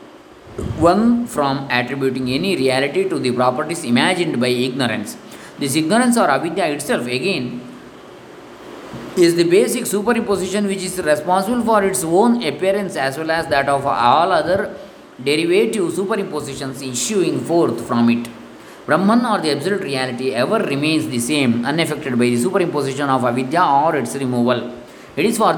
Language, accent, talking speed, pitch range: English, Indian, 145 wpm, 130-195 Hz